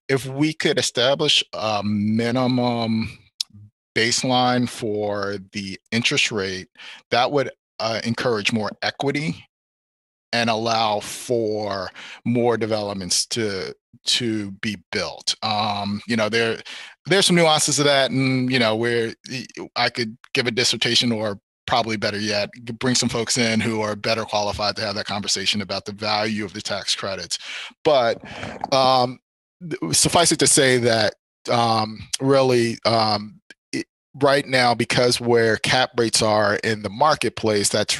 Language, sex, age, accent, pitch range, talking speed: English, male, 40-59, American, 105-125 Hz, 140 wpm